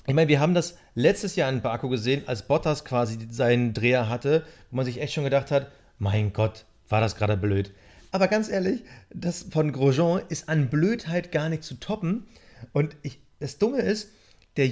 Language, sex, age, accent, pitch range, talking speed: German, male, 30-49, German, 115-160 Hz, 195 wpm